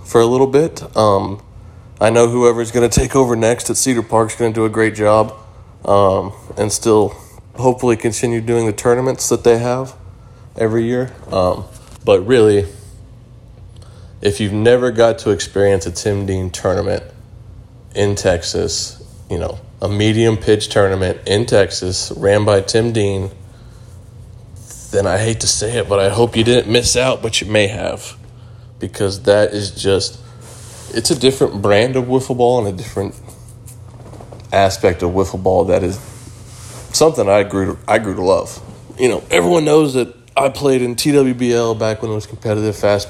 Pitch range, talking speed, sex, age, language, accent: 100-120 Hz, 165 wpm, male, 20-39, English, American